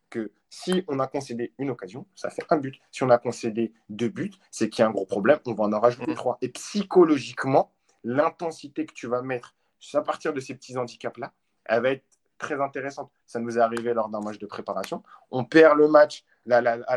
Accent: French